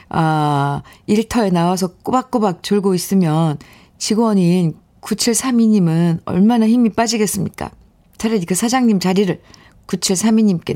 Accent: native